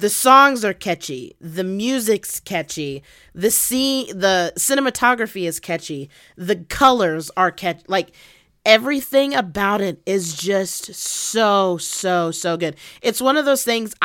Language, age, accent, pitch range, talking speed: English, 30-49, American, 165-215 Hz, 135 wpm